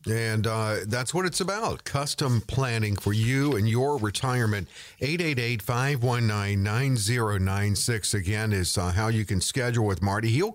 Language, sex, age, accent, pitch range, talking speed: English, male, 50-69, American, 100-135 Hz, 135 wpm